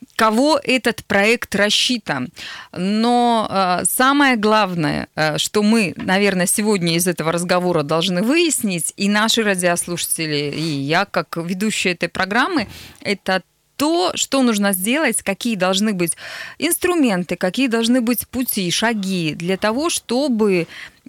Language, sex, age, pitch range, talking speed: Russian, female, 20-39, 175-230 Hz, 120 wpm